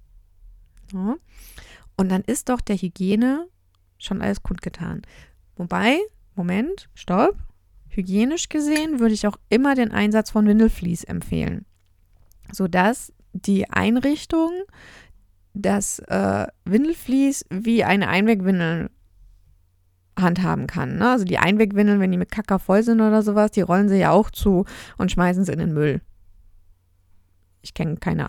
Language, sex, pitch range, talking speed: German, female, 170-210 Hz, 135 wpm